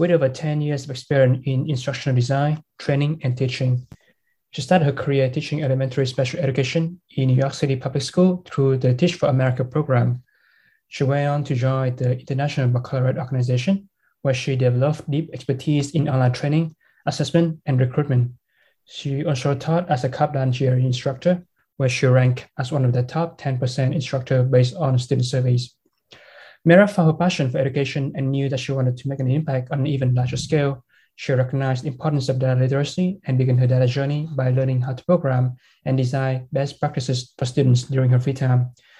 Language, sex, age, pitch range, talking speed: English, male, 20-39, 130-145 Hz, 185 wpm